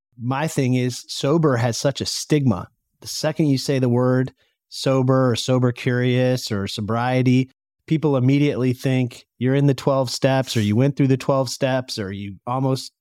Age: 30-49